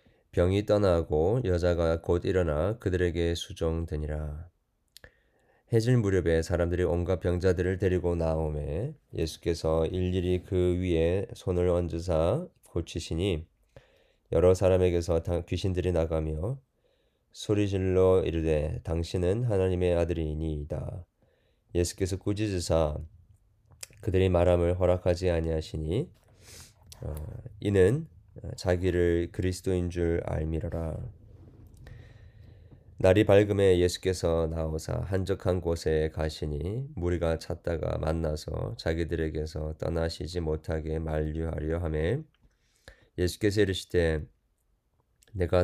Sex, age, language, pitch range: male, 20-39, Korean, 80-100 Hz